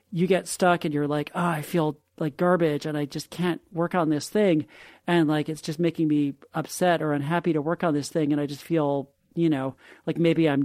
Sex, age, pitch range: male, 40-59, 150-180 Hz